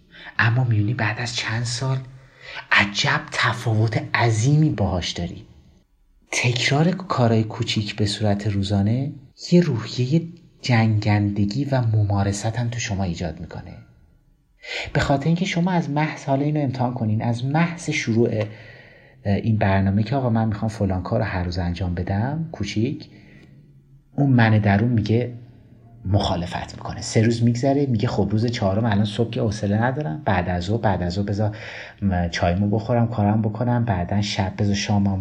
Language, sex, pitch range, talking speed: Persian, male, 100-130 Hz, 145 wpm